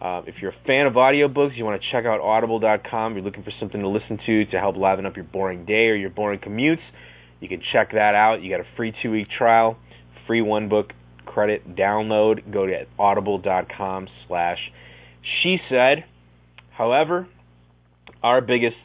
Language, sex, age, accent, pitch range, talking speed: English, male, 20-39, American, 90-110 Hz, 170 wpm